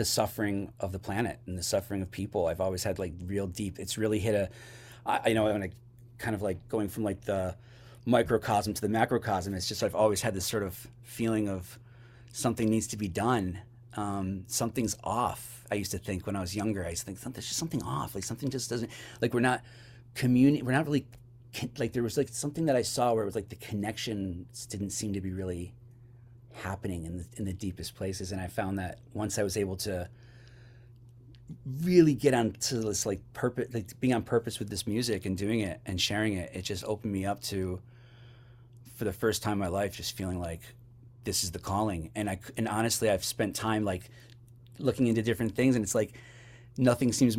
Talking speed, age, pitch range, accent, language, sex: 220 wpm, 30-49, 100-120 Hz, American, English, male